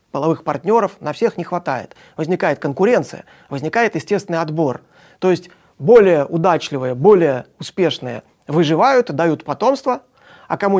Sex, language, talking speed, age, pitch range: male, Russian, 120 wpm, 30-49, 150-205 Hz